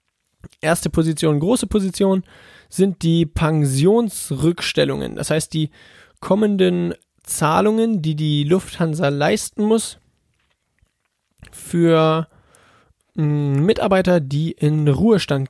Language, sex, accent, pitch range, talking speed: German, male, German, 155-185 Hz, 85 wpm